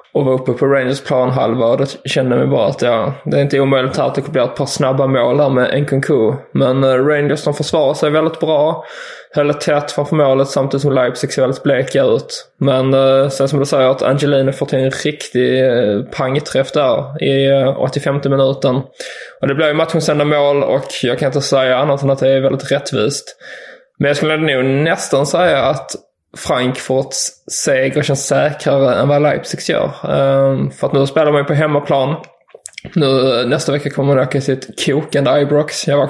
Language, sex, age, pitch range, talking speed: English, male, 20-39, 135-150 Hz, 205 wpm